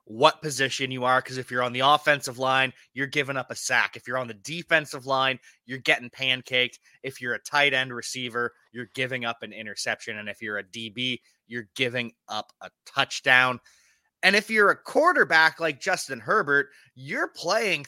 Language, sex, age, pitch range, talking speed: English, male, 20-39, 120-155 Hz, 190 wpm